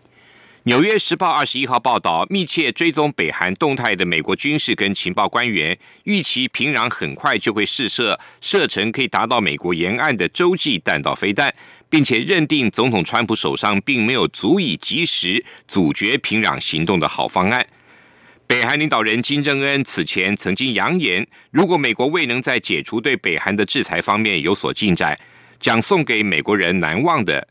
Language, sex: German, male